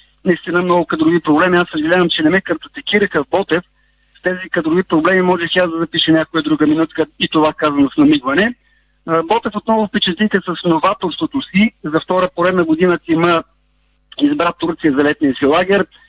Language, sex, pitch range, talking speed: Bulgarian, male, 160-195 Hz, 170 wpm